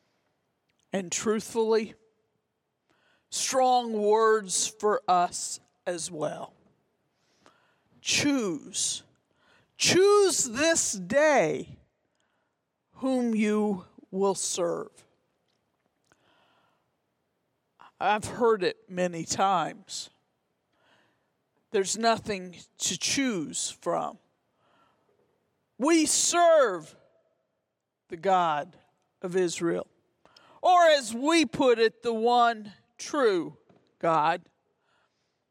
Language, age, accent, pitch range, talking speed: English, 50-69, American, 205-265 Hz, 70 wpm